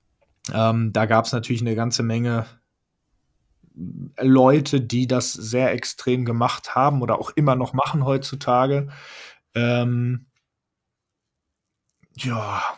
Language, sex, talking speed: German, male, 110 wpm